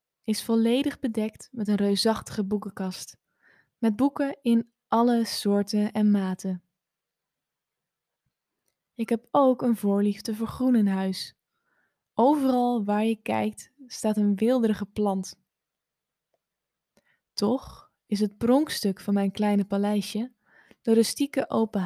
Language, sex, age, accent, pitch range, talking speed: Dutch, female, 10-29, Dutch, 200-230 Hz, 115 wpm